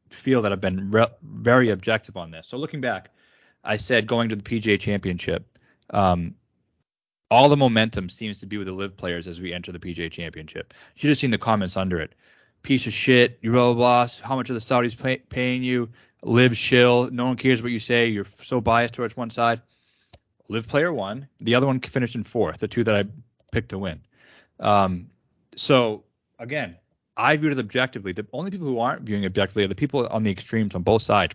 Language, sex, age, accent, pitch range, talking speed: English, male, 30-49, American, 100-125 Hz, 210 wpm